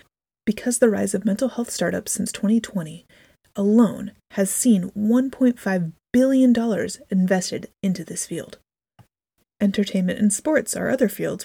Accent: American